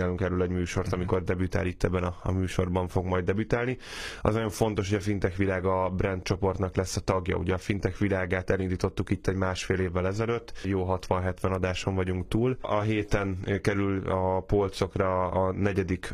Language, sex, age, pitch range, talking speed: Hungarian, male, 10-29, 90-100 Hz, 180 wpm